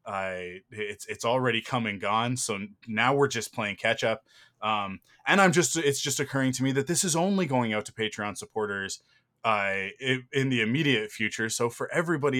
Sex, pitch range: male, 100-125 Hz